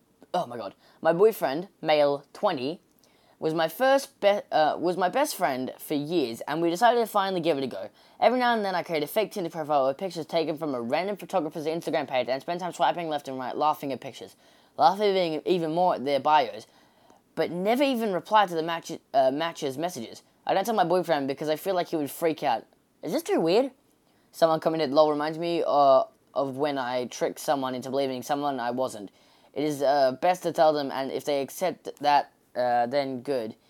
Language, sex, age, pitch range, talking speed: English, female, 10-29, 140-180 Hz, 210 wpm